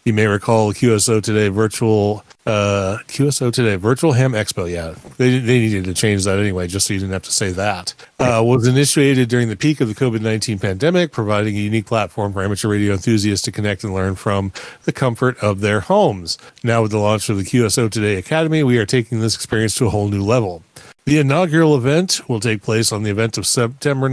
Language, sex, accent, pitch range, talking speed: English, male, American, 105-135 Hz, 215 wpm